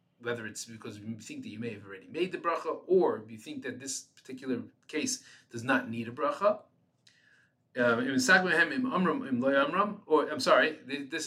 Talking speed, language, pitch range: 160 wpm, English, 115-160 Hz